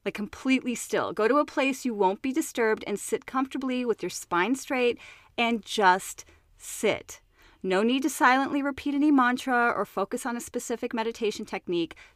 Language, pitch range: English, 210-285 Hz